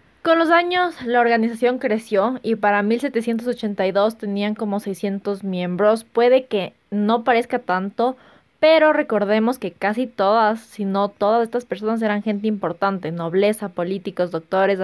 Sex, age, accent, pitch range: female, 20-39, Mexican, 195-245 Hz